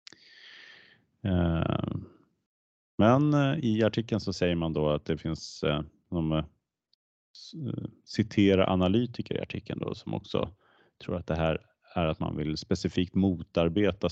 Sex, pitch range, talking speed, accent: male, 85-110 Hz, 115 wpm, Norwegian